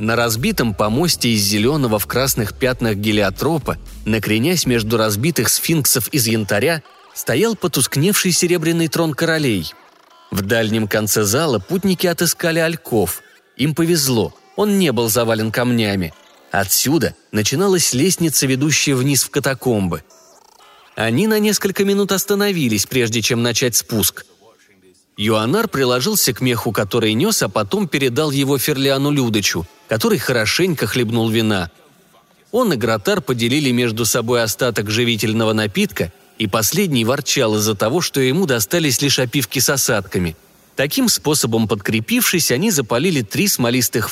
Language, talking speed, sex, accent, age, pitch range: Russian, 130 wpm, male, native, 30-49, 110-160 Hz